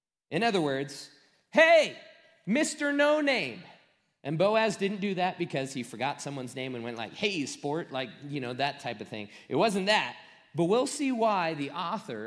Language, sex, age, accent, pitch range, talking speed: English, male, 30-49, American, 130-220 Hz, 185 wpm